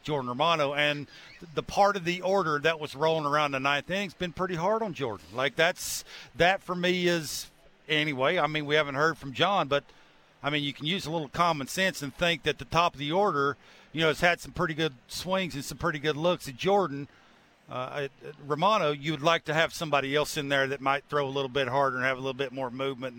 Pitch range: 145-190 Hz